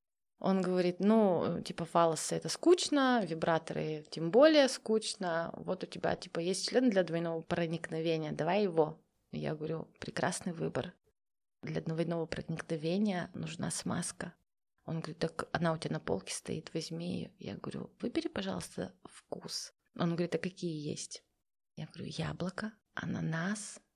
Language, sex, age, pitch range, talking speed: Russian, female, 30-49, 165-205 Hz, 140 wpm